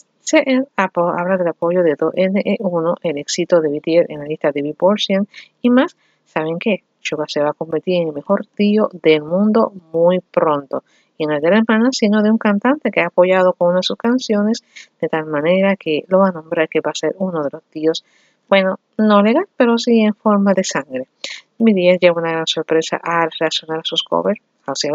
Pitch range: 160-215 Hz